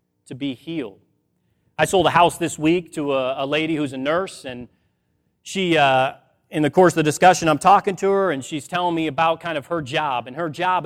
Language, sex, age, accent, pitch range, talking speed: English, male, 30-49, American, 135-175 Hz, 225 wpm